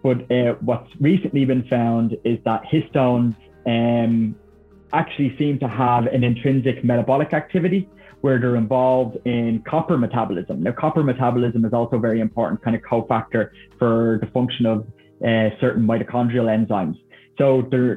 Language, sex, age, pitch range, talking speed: English, male, 20-39, 110-130 Hz, 150 wpm